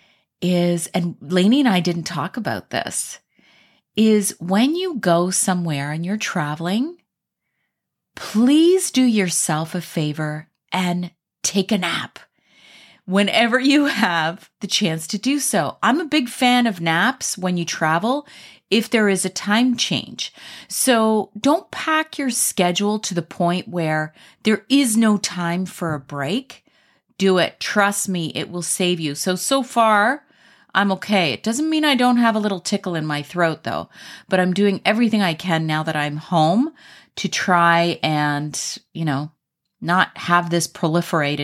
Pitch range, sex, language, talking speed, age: 165-220 Hz, female, English, 160 wpm, 30-49